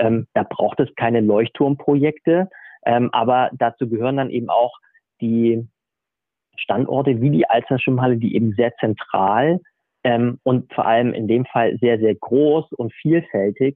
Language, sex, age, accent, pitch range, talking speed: German, male, 40-59, German, 115-135 Hz, 150 wpm